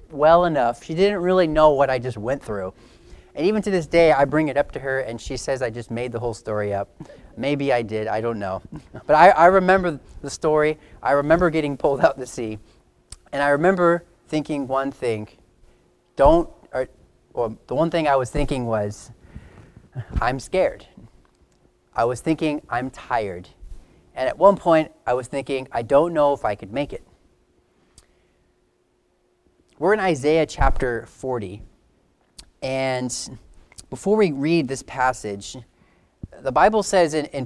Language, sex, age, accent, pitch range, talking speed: English, male, 40-59, American, 110-150 Hz, 170 wpm